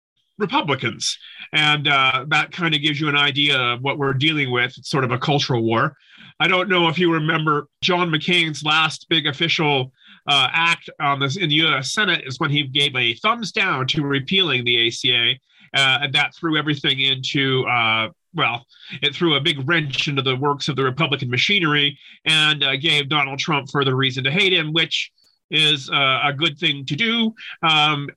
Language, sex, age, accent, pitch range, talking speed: English, male, 40-59, American, 135-165 Hz, 190 wpm